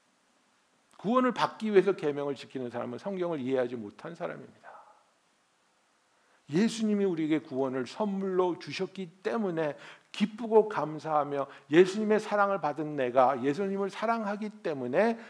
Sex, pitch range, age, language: male, 125-200 Hz, 60-79, Korean